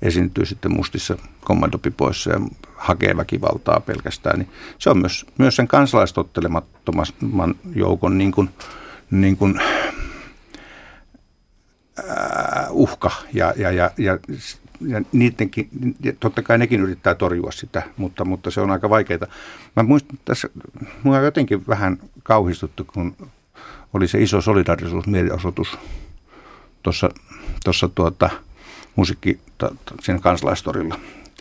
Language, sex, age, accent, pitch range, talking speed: Finnish, male, 50-69, native, 90-110 Hz, 95 wpm